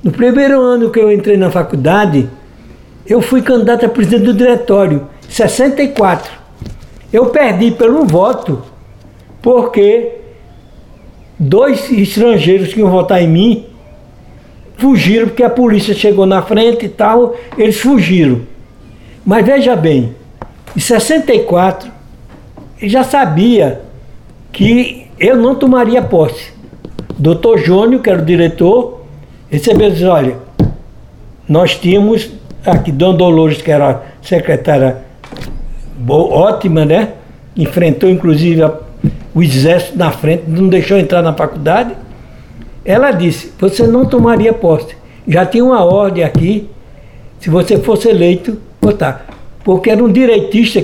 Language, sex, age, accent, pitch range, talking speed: Portuguese, male, 60-79, Brazilian, 160-230 Hz, 125 wpm